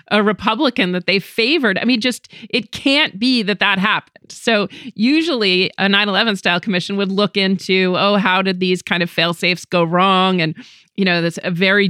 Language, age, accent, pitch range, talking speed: English, 40-59, American, 170-225 Hz, 195 wpm